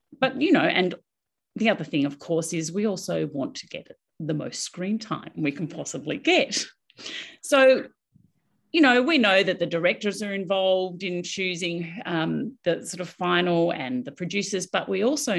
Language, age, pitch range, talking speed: English, 40-59, 160-225 Hz, 180 wpm